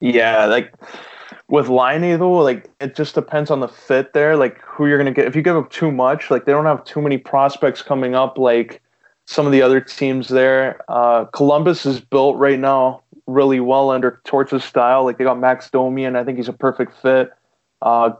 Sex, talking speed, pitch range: male, 210 wpm, 120-140 Hz